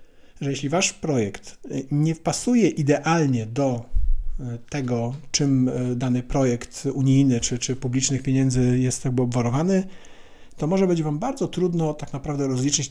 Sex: male